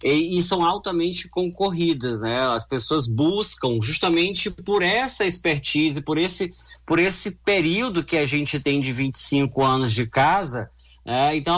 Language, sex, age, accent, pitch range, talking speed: Portuguese, male, 20-39, Brazilian, 135-185 Hz, 145 wpm